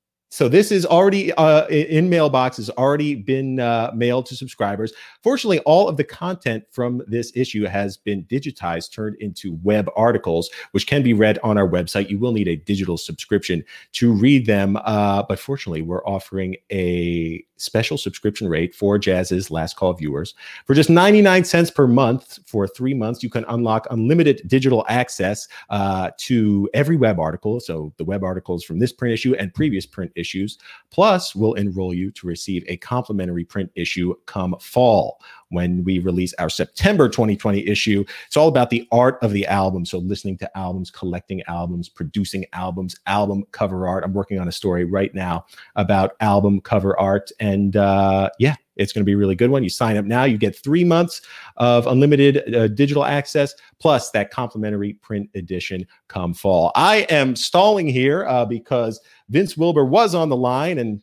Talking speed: 180 wpm